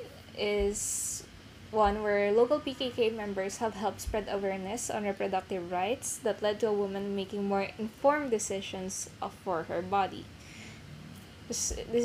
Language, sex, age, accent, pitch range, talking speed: Filipino, female, 10-29, native, 195-240 Hz, 130 wpm